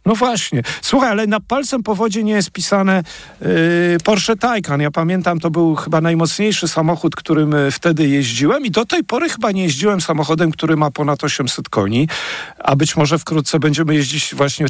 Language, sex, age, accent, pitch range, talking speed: Polish, male, 50-69, native, 140-175 Hz, 180 wpm